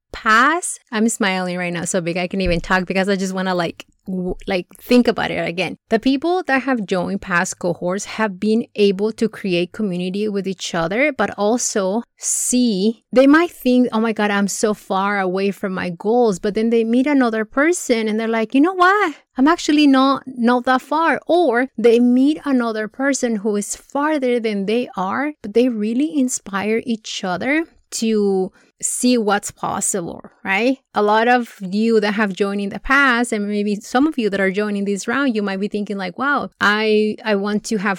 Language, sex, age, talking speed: English, female, 30-49, 195 wpm